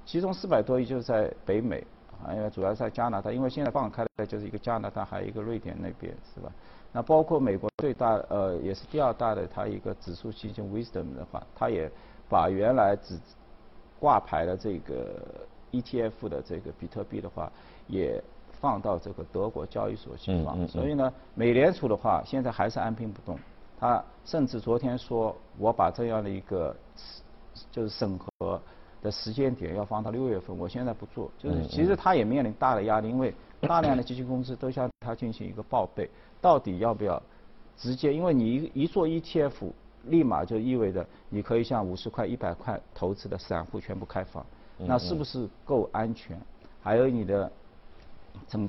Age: 50-69